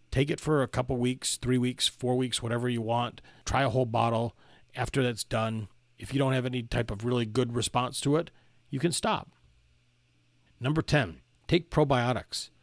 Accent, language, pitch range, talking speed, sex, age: American, English, 115-130 Hz, 185 wpm, male, 40-59